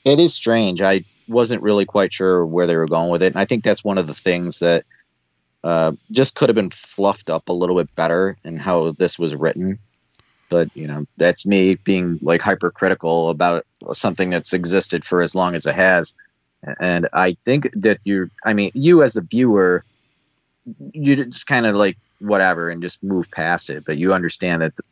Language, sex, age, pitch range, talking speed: English, male, 30-49, 85-100 Hz, 200 wpm